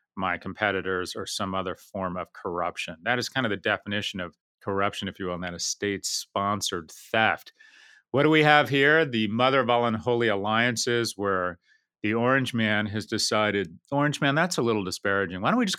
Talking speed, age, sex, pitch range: 195 wpm, 40-59, male, 100-125 Hz